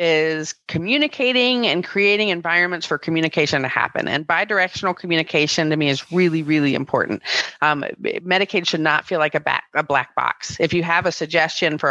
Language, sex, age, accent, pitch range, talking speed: English, female, 30-49, American, 150-180 Hz, 175 wpm